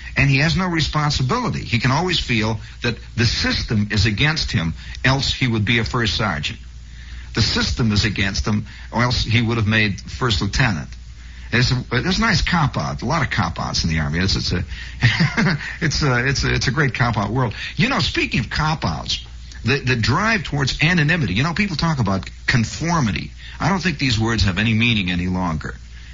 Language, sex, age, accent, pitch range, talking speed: English, male, 50-69, American, 80-125 Hz, 185 wpm